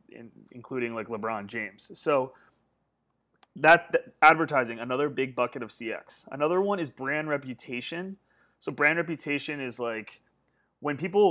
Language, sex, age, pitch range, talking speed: English, male, 30-49, 125-165 Hz, 140 wpm